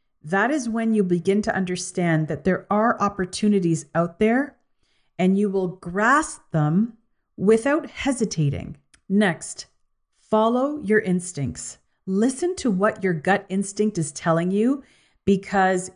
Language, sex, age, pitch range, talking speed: English, female, 40-59, 165-220 Hz, 130 wpm